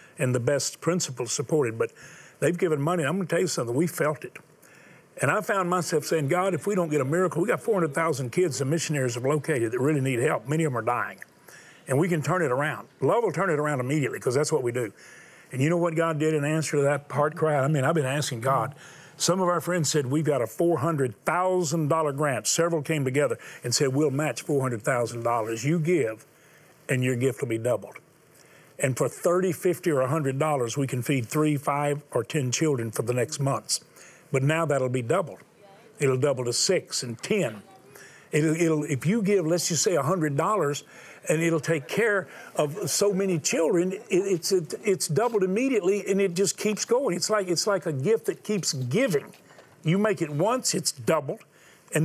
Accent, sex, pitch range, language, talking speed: American, male, 135-170 Hz, English, 210 wpm